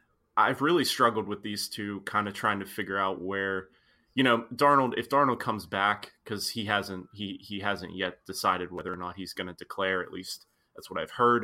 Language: English